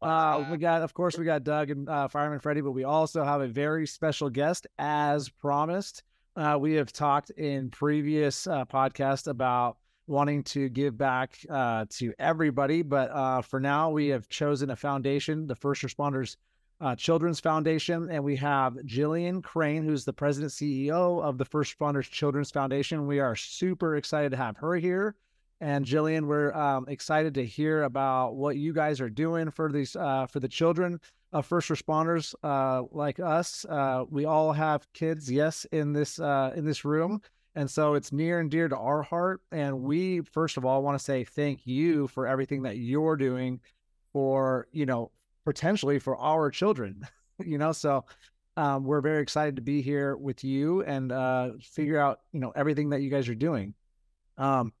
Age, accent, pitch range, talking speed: 30-49, American, 135-155 Hz, 185 wpm